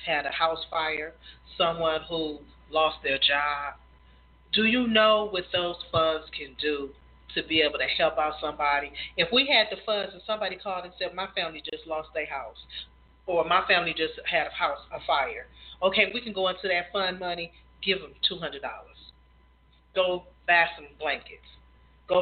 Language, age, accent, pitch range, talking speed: English, 40-59, American, 150-220 Hz, 175 wpm